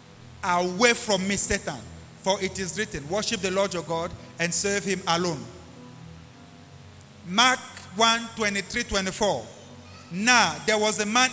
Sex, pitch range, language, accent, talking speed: male, 195-305 Hz, English, Nigerian, 140 wpm